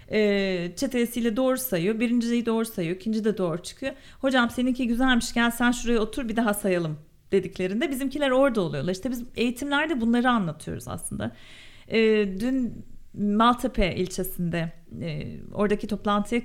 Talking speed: 140 wpm